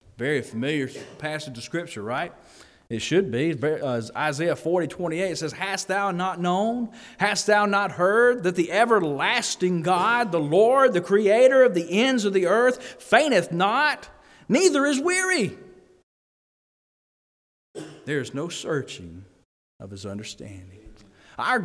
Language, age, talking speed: English, 40-59, 135 wpm